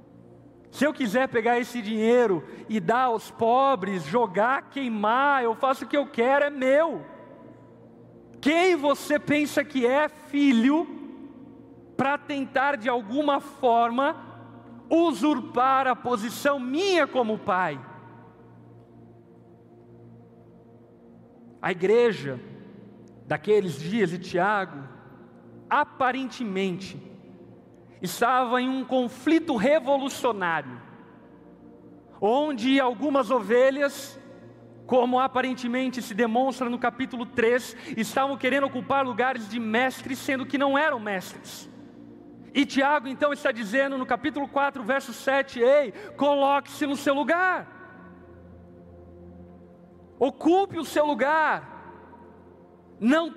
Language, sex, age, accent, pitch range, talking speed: Portuguese, male, 50-69, Brazilian, 210-280 Hz, 100 wpm